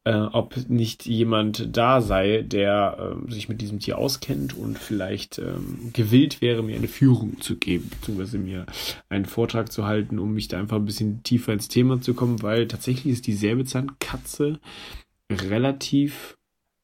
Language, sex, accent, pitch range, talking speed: German, male, German, 105-125 Hz, 165 wpm